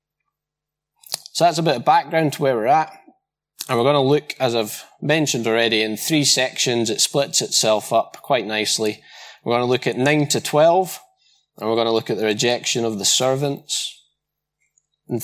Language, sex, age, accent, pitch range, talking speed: English, male, 20-39, British, 110-150 Hz, 190 wpm